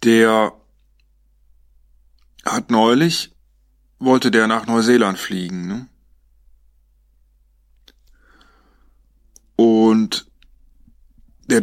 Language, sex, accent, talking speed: German, male, German, 55 wpm